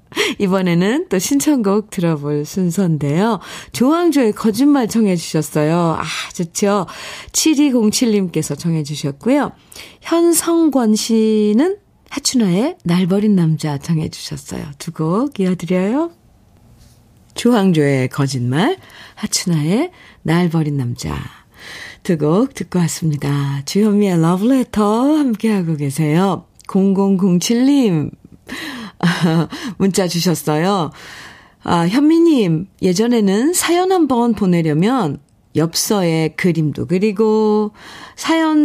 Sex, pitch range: female, 165-240 Hz